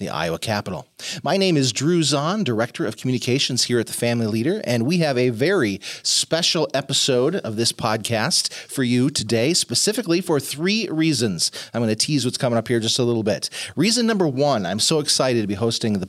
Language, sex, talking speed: English, male, 205 wpm